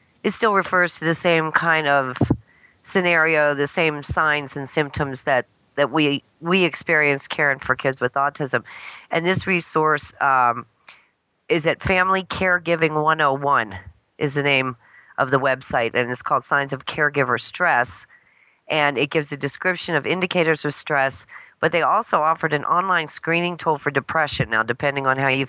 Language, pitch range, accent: English, 135-160 Hz, American